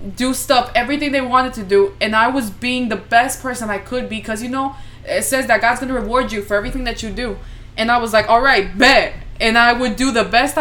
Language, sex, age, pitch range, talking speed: English, female, 20-39, 215-270 Hz, 260 wpm